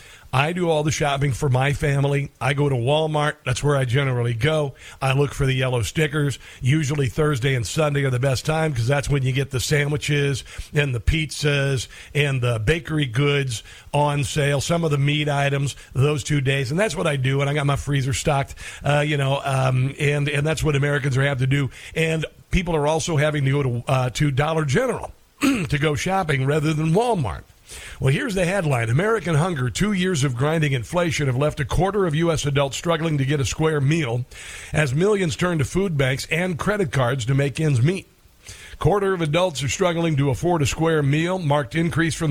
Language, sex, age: English, male, 50-69